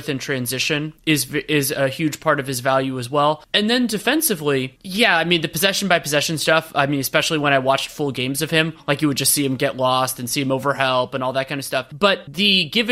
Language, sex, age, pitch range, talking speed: English, male, 30-49, 140-185 Hz, 250 wpm